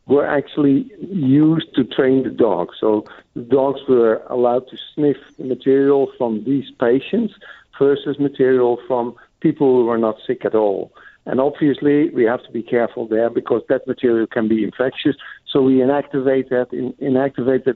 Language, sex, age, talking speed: English, male, 60-79, 160 wpm